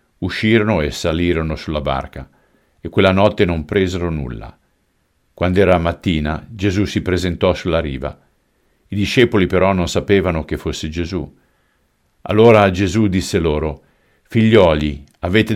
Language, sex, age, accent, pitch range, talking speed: Italian, male, 50-69, native, 75-100 Hz, 125 wpm